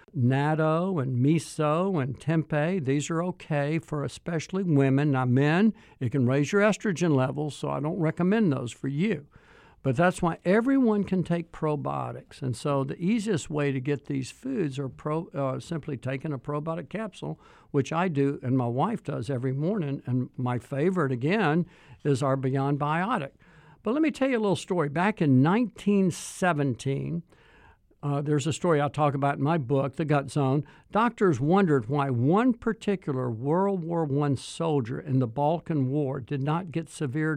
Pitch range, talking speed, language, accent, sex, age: 135-180 Hz, 175 wpm, English, American, male, 60-79